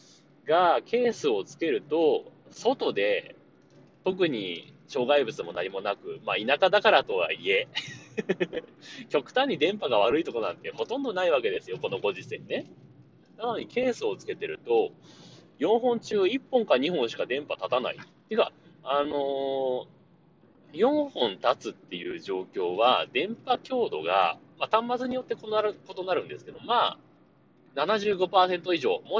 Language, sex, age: Japanese, male, 30-49